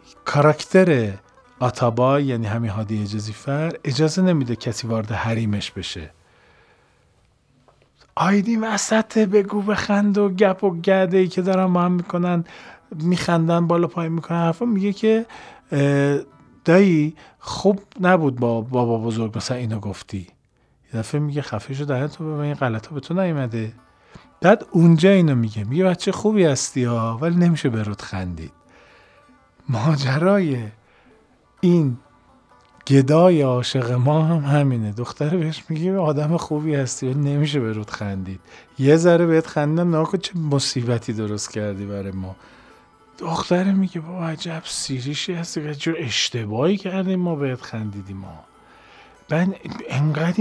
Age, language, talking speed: 40-59, Persian, 130 wpm